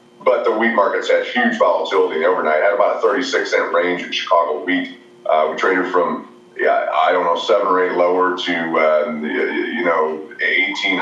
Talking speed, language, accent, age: 185 wpm, English, American, 30-49